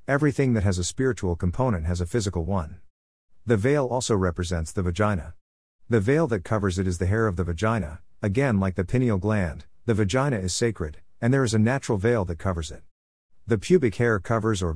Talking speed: 205 wpm